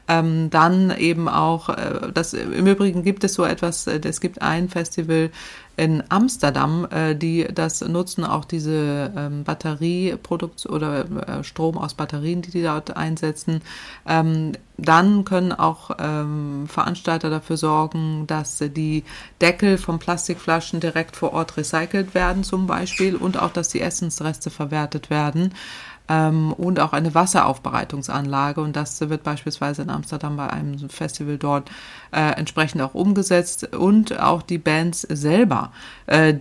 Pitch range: 155-180 Hz